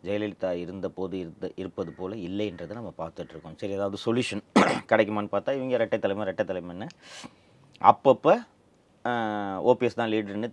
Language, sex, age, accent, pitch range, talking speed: Tamil, male, 30-49, native, 95-130 Hz, 125 wpm